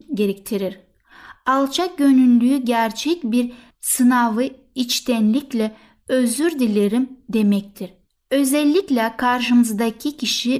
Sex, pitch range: female, 220-270 Hz